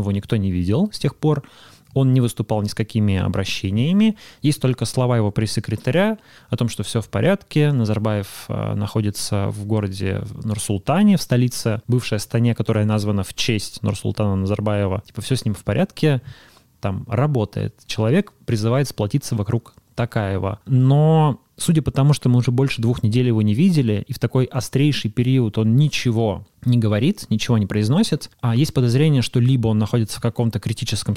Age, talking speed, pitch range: 20-39, 170 wpm, 105-130 Hz